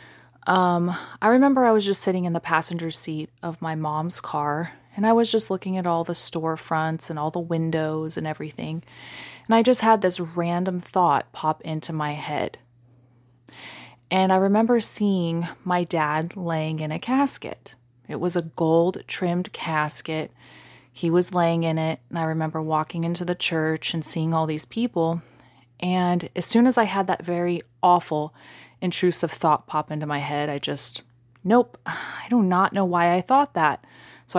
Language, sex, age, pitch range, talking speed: English, female, 30-49, 155-185 Hz, 175 wpm